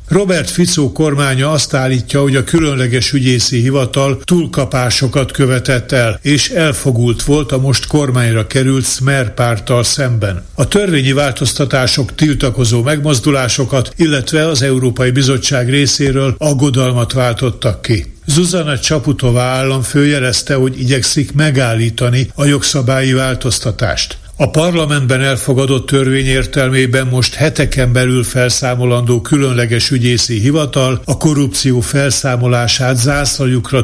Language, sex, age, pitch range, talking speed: Hungarian, male, 60-79, 120-140 Hz, 110 wpm